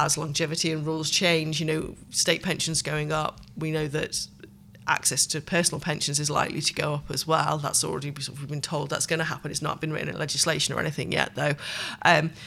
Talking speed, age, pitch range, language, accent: 215 wpm, 30-49, 155-165 Hz, English, British